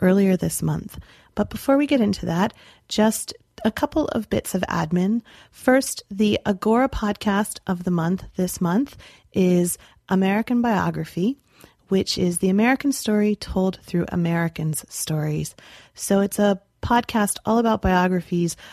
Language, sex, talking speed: English, female, 140 wpm